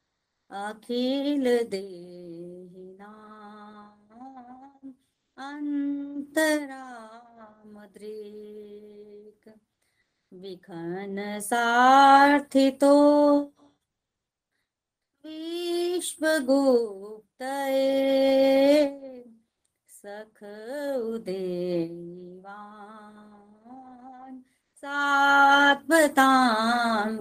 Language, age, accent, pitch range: Hindi, 30-49, native, 210-275 Hz